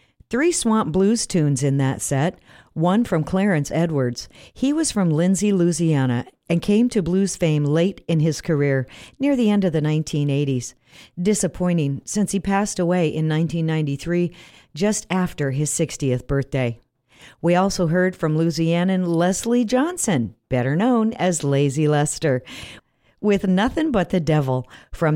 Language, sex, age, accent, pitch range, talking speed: English, female, 50-69, American, 145-205 Hz, 150 wpm